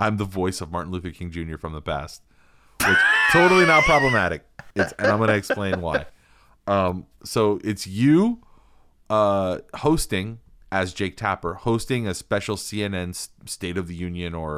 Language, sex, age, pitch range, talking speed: English, male, 30-49, 80-105 Hz, 165 wpm